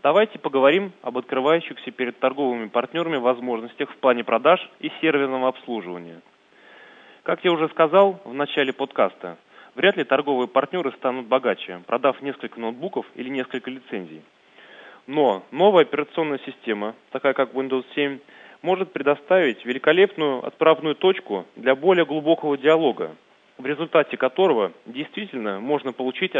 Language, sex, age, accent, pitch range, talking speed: Russian, male, 20-39, native, 125-165 Hz, 125 wpm